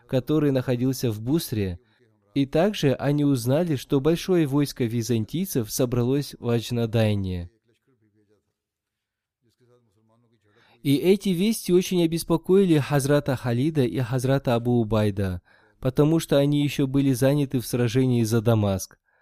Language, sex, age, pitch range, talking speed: Russian, male, 20-39, 115-140 Hz, 110 wpm